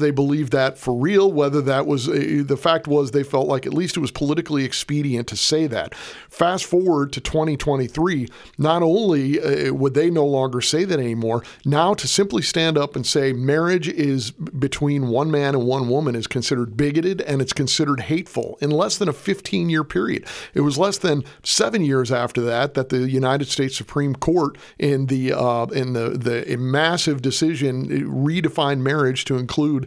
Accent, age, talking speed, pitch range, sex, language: American, 40-59, 185 wpm, 130-165 Hz, male, English